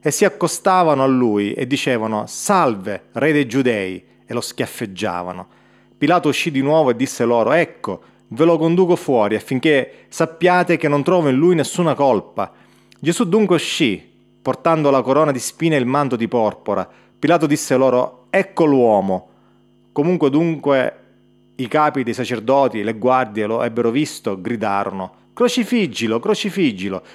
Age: 30-49